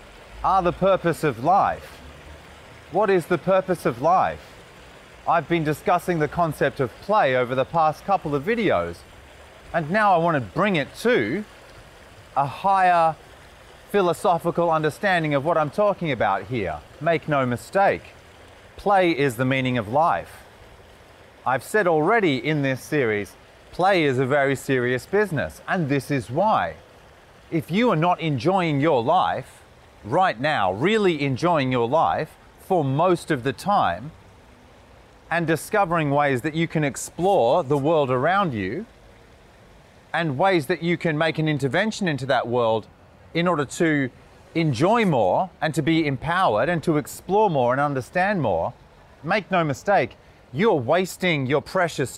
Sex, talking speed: male, 150 wpm